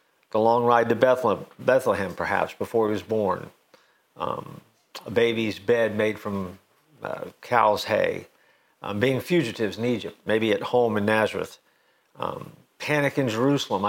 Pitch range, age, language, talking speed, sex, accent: 110-135 Hz, 50-69, English, 145 wpm, male, American